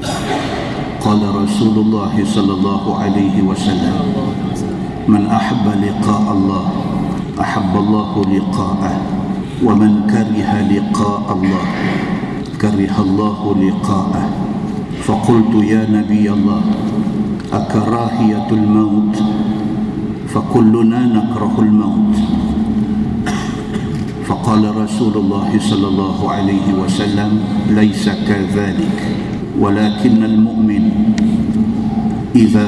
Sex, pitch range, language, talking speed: male, 100-110 Hz, Malay, 75 wpm